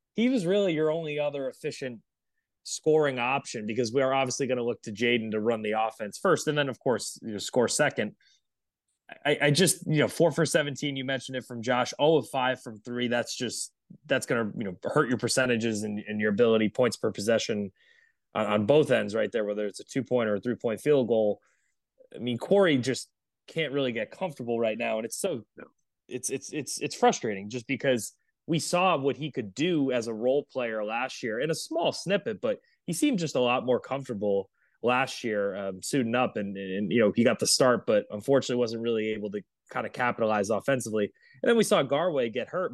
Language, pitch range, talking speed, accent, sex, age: English, 110-145 Hz, 220 wpm, American, male, 20-39